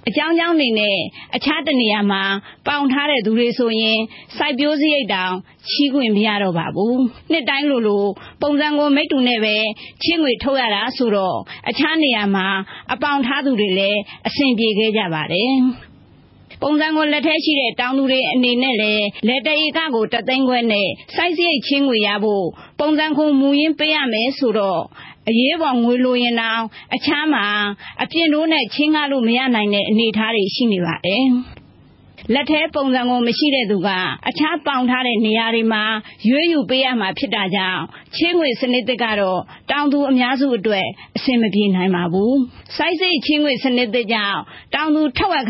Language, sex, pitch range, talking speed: English, female, 215-290 Hz, 35 wpm